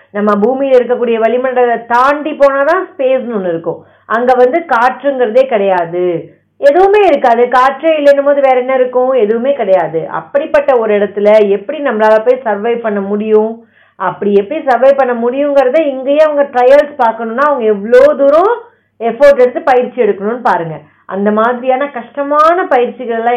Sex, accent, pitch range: female, native, 220-290 Hz